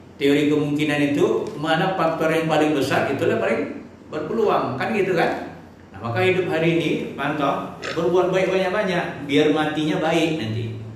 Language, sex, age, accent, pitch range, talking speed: Indonesian, male, 50-69, native, 115-155 Hz, 150 wpm